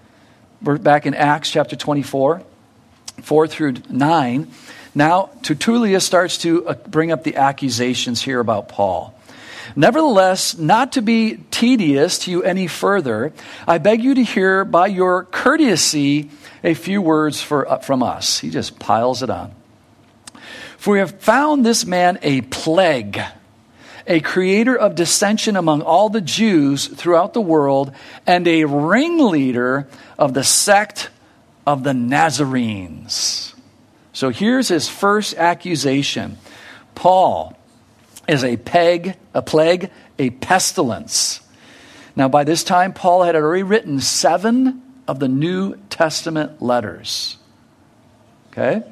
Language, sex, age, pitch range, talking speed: English, male, 50-69, 135-190 Hz, 130 wpm